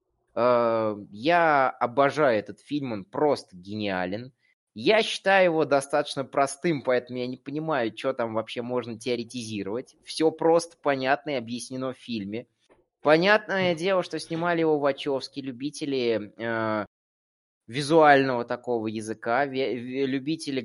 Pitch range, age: 120-155 Hz, 20-39